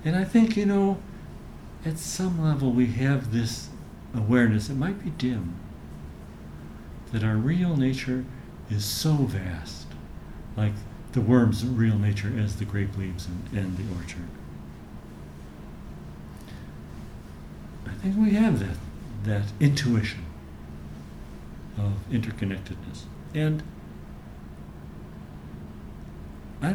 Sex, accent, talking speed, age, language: male, American, 110 wpm, 60-79, English